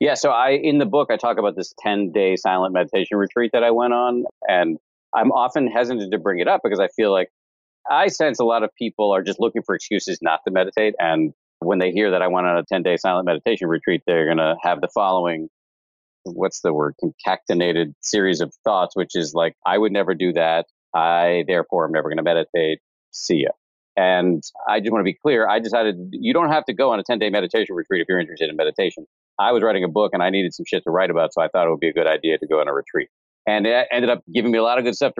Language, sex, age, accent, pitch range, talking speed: English, male, 40-59, American, 90-120 Hz, 255 wpm